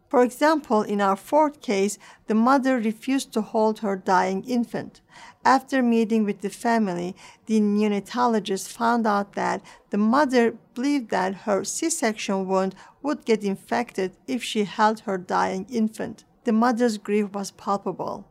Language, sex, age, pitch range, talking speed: English, female, 50-69, 195-235 Hz, 150 wpm